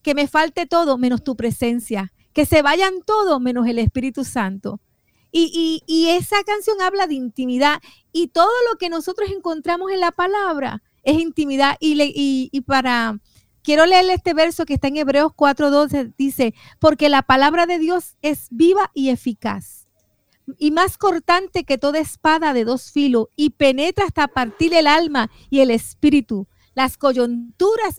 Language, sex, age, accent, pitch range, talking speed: Spanish, female, 40-59, American, 260-340 Hz, 165 wpm